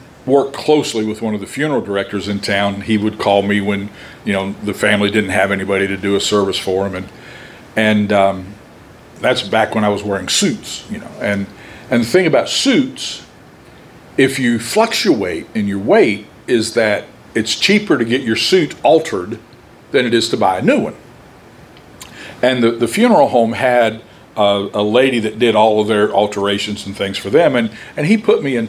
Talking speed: 195 wpm